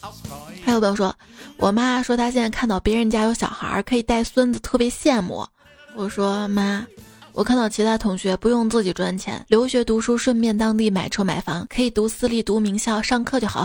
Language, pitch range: Chinese, 200-245 Hz